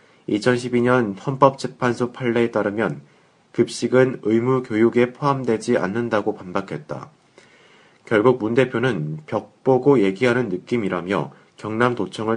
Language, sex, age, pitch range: Korean, male, 30-49, 105-125 Hz